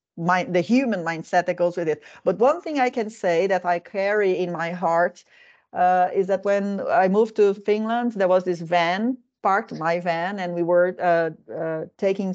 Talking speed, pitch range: 200 wpm, 175-225 Hz